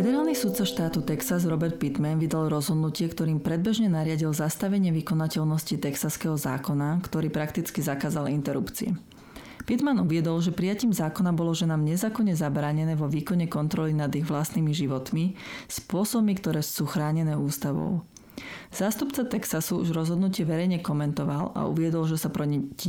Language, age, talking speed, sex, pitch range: Slovak, 30-49, 135 wpm, female, 155-190 Hz